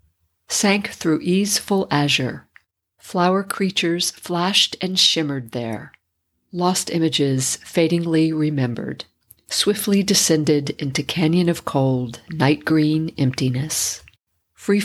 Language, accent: English, American